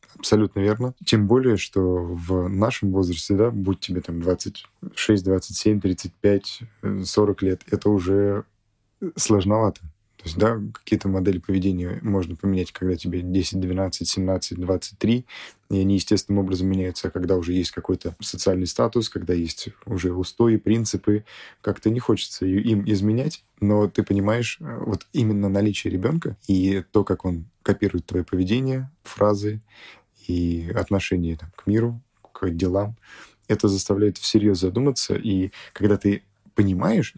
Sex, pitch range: male, 95-110 Hz